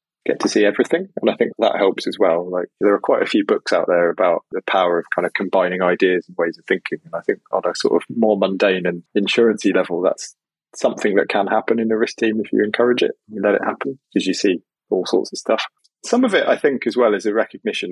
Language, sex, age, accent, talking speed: English, male, 20-39, British, 260 wpm